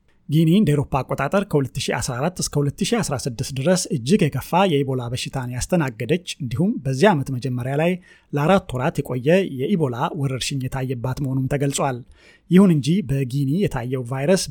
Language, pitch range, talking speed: Amharic, 130-170 Hz, 125 wpm